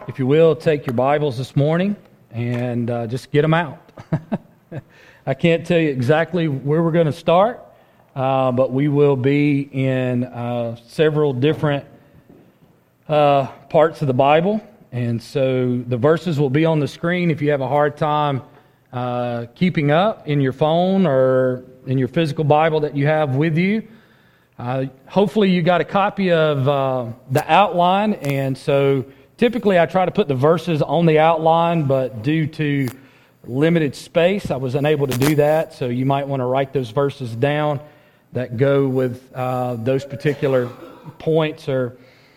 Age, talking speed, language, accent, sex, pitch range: 40-59, 165 wpm, English, American, male, 135-165 Hz